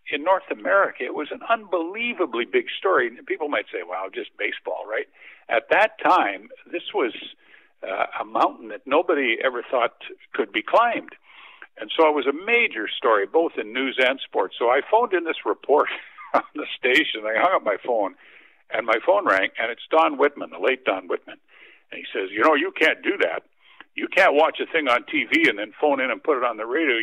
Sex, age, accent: male, 60-79, American